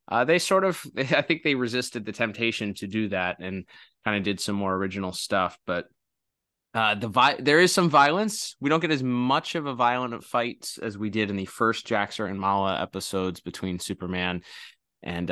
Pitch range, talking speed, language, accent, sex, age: 95-115 Hz, 195 wpm, English, American, male, 20-39